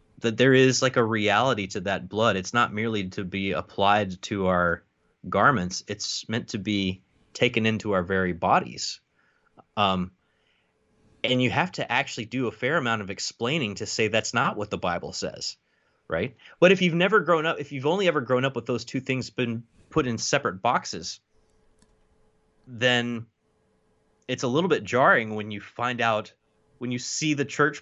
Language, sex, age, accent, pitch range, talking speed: English, male, 20-39, American, 100-135 Hz, 180 wpm